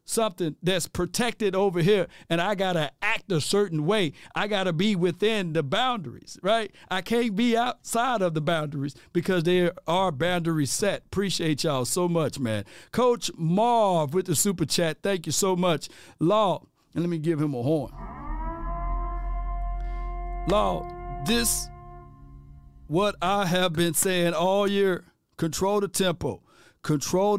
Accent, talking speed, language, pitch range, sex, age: American, 150 wpm, English, 150-205 Hz, male, 50-69